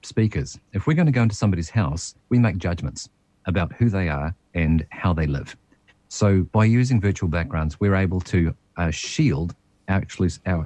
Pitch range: 85-110 Hz